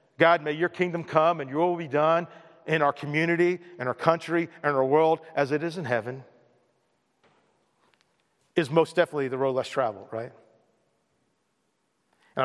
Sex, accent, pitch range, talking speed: male, American, 130-165 Hz, 160 wpm